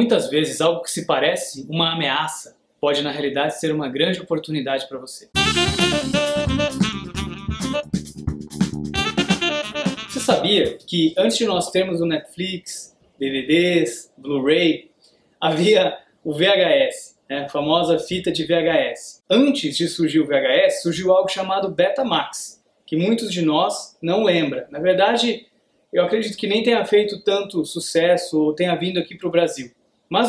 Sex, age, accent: male, 20-39, Brazilian